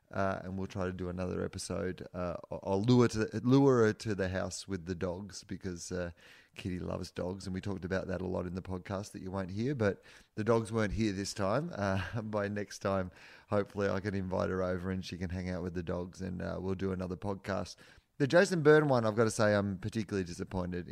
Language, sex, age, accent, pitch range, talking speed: English, male, 30-49, Australian, 95-105 Hz, 230 wpm